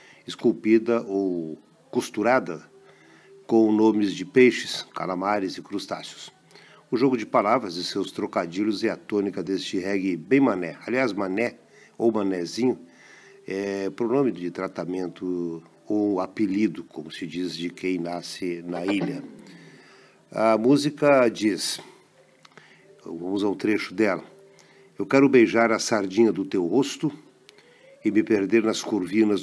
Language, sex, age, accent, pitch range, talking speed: Portuguese, male, 50-69, Brazilian, 90-115 Hz, 130 wpm